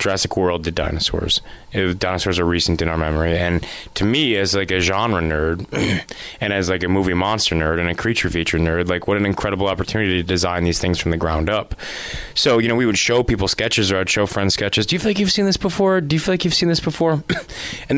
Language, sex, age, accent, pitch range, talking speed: English, male, 20-39, American, 90-120 Hz, 245 wpm